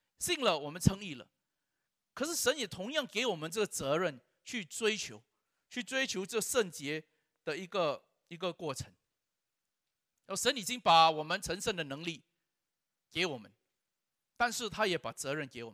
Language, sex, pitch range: Chinese, male, 145-230 Hz